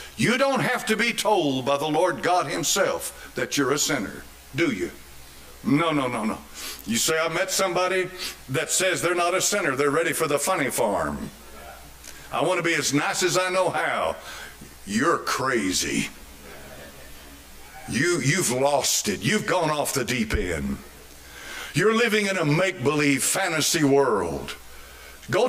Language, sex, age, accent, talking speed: English, male, 60-79, American, 160 wpm